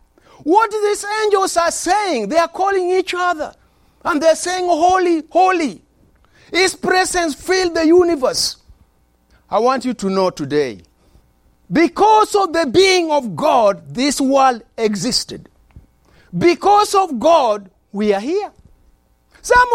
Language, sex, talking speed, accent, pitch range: English, male, 130 wpm, Nigerian, 280-415 Hz